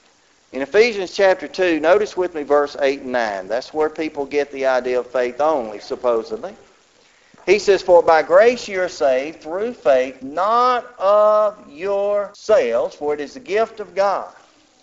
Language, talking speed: English, 165 wpm